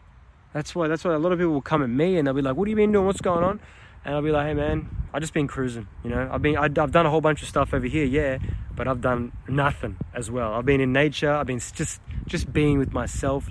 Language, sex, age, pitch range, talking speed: English, male, 20-39, 125-150 Hz, 290 wpm